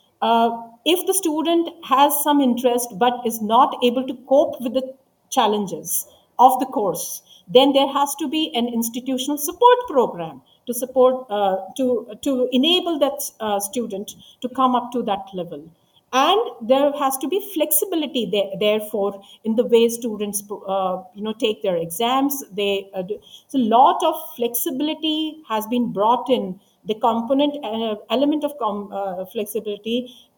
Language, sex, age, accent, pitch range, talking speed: English, female, 50-69, Indian, 205-275 Hz, 155 wpm